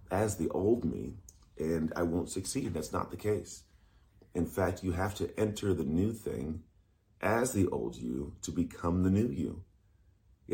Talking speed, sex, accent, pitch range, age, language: 175 wpm, male, American, 85-100 Hz, 40-59, English